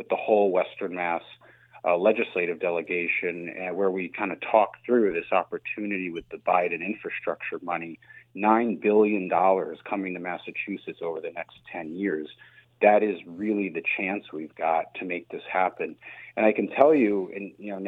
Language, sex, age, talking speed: English, male, 40-59, 170 wpm